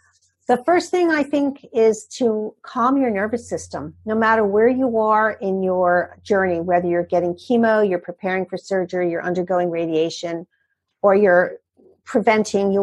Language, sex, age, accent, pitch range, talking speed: English, female, 50-69, American, 185-230 Hz, 155 wpm